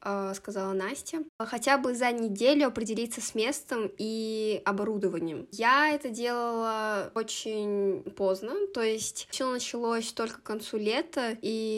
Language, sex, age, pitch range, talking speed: Russian, female, 20-39, 210-250 Hz, 125 wpm